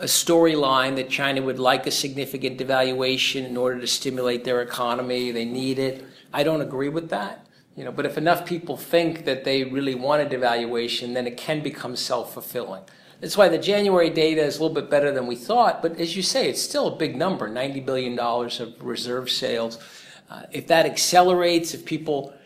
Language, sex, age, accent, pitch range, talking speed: English, male, 50-69, American, 125-155 Hz, 200 wpm